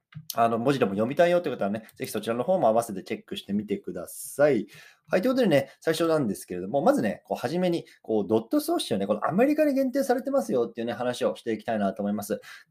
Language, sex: Japanese, male